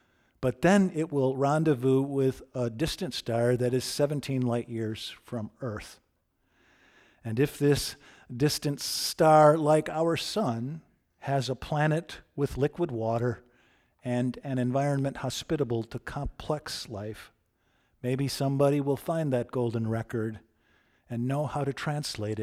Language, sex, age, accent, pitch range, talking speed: English, male, 50-69, American, 115-140 Hz, 130 wpm